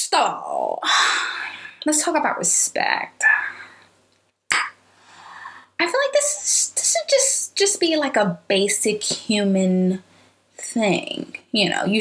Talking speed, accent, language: 110 wpm, American, English